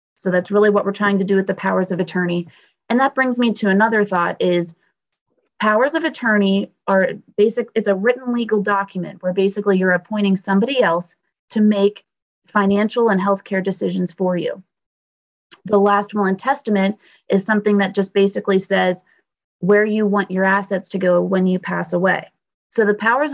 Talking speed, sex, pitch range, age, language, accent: 180 wpm, female, 185-210 Hz, 30-49, English, American